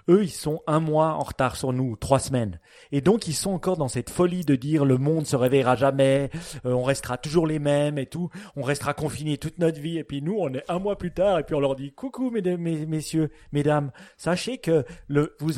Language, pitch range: French, 130-175 Hz